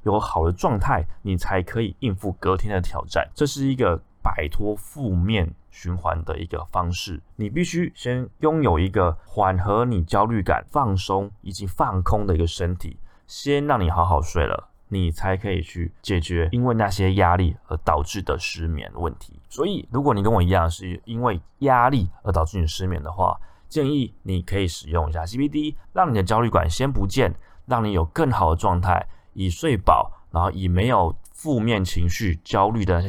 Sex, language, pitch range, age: male, Chinese, 85-105 Hz, 20-39